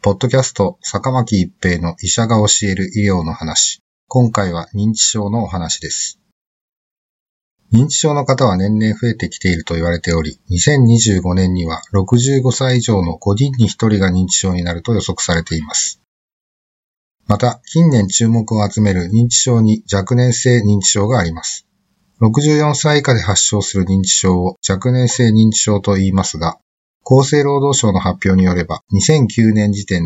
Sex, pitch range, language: male, 95-120 Hz, Japanese